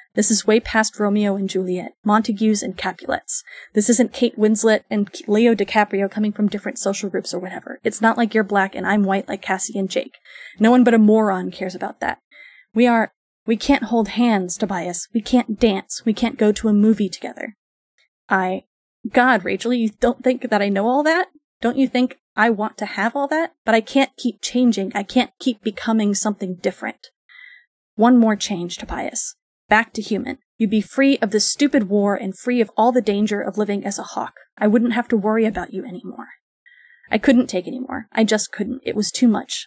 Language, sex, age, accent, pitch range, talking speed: English, female, 20-39, American, 205-245 Hz, 205 wpm